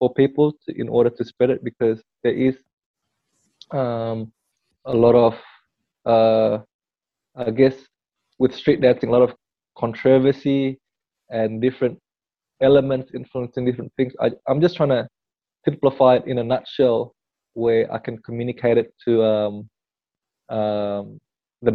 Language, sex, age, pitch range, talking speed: English, male, 20-39, 110-130 Hz, 140 wpm